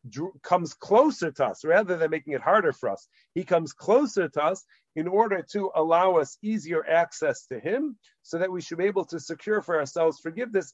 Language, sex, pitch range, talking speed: English, male, 150-195 Hz, 200 wpm